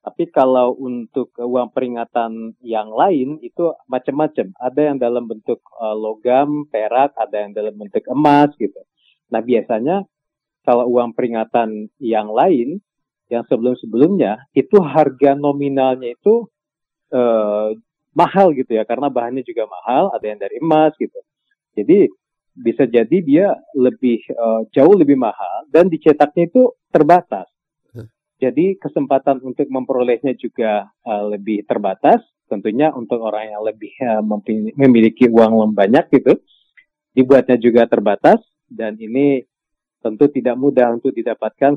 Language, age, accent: Indonesian, 40-59, native